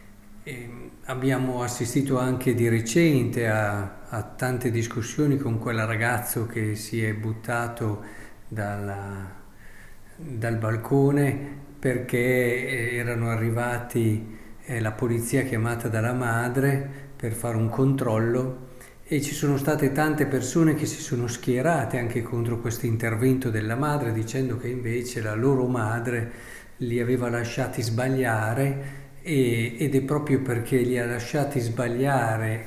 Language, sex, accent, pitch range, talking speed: Italian, male, native, 115-140 Hz, 125 wpm